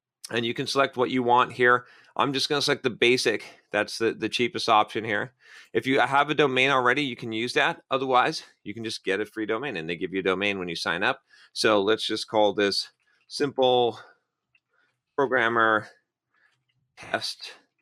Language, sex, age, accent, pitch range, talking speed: English, male, 30-49, American, 105-140 Hz, 190 wpm